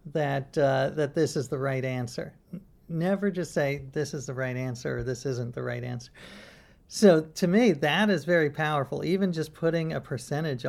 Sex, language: male, English